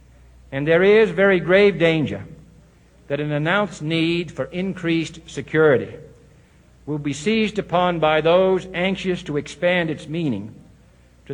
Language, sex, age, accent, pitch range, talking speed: English, male, 60-79, American, 130-175 Hz, 130 wpm